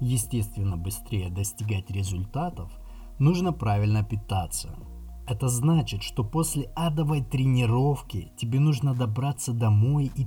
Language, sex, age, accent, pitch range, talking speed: Russian, male, 20-39, native, 100-135 Hz, 105 wpm